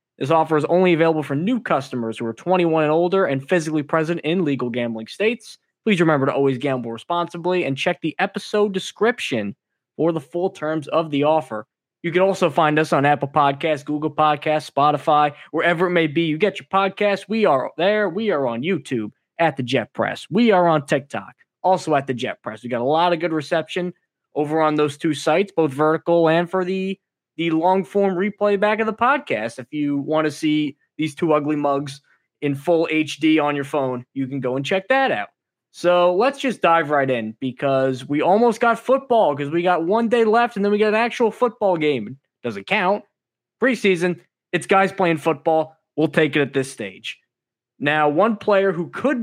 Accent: American